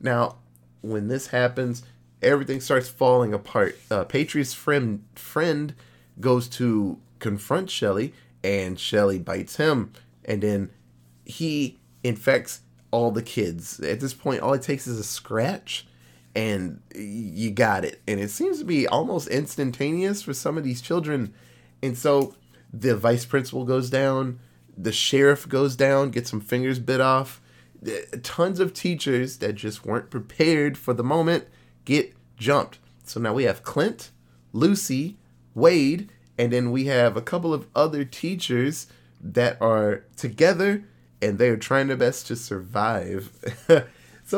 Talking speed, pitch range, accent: 145 wpm, 100-140 Hz, American